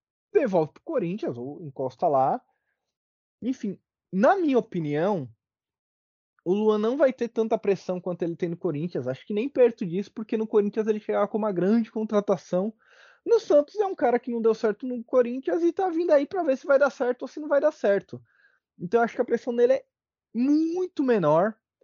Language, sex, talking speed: Portuguese, male, 200 wpm